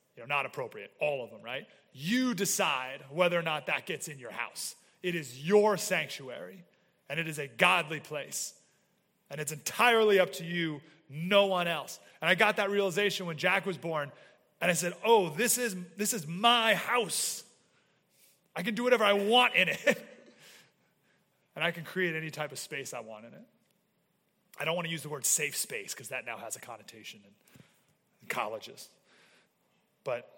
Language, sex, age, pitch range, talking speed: English, male, 30-49, 155-200 Hz, 190 wpm